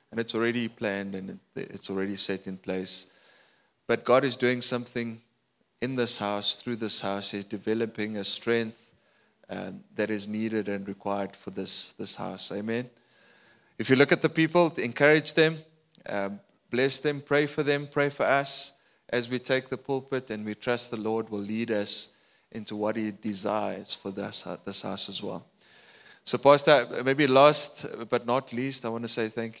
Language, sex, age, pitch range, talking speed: English, male, 30-49, 105-130 Hz, 180 wpm